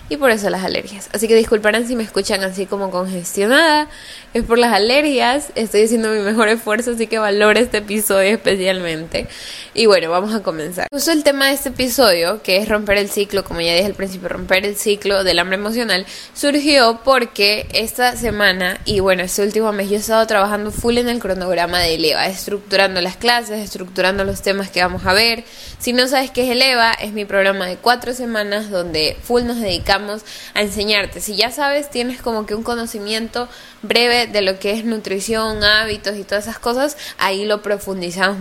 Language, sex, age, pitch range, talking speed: Spanish, female, 10-29, 195-230 Hz, 195 wpm